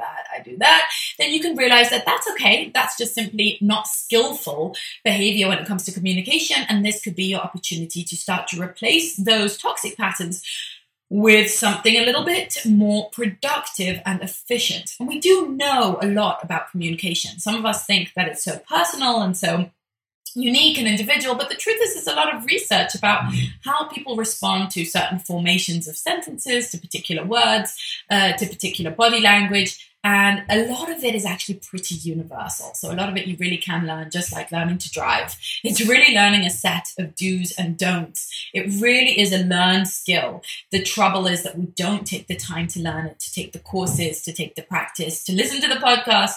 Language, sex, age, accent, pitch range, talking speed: English, female, 20-39, British, 175-225 Hz, 200 wpm